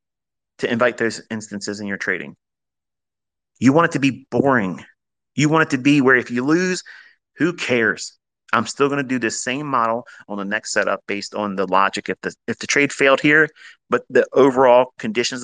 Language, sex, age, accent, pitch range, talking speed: English, male, 30-49, American, 110-140 Hz, 195 wpm